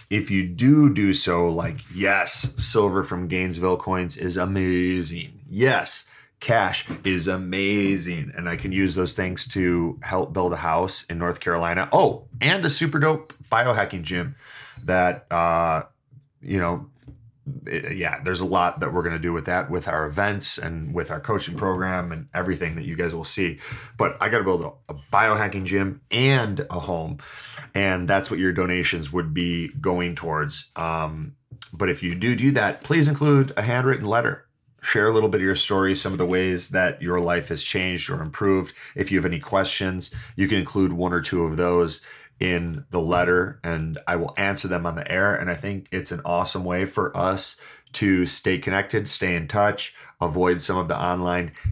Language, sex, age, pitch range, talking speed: English, male, 30-49, 90-115 Hz, 190 wpm